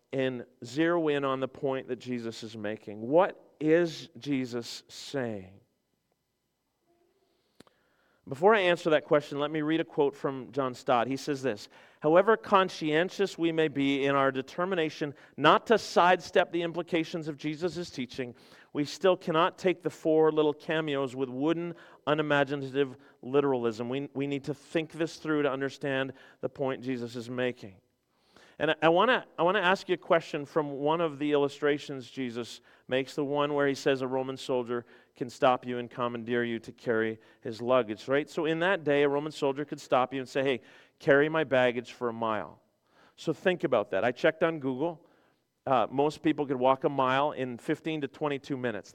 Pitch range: 130-160 Hz